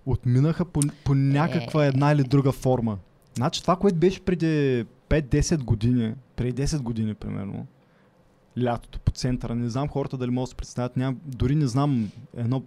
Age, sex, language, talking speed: 20-39, male, Bulgarian, 165 wpm